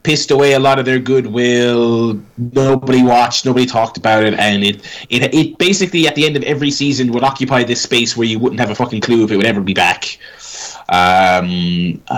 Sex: male